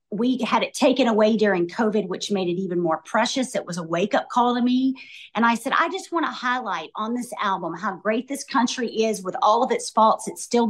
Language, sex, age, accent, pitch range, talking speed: English, female, 40-59, American, 200-240 Hz, 240 wpm